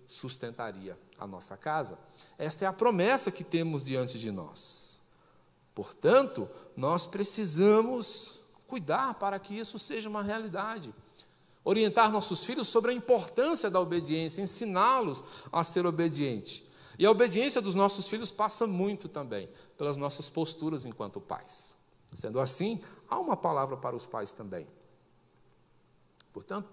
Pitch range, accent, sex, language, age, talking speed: 145-205 Hz, Brazilian, male, Portuguese, 60-79, 130 wpm